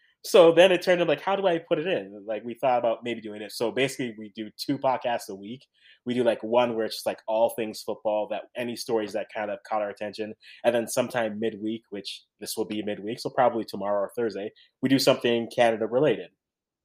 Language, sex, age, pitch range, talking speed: English, male, 20-39, 115-165 Hz, 235 wpm